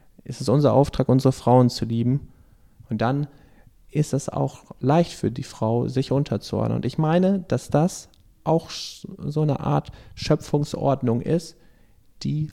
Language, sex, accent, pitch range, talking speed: German, male, German, 115-145 Hz, 150 wpm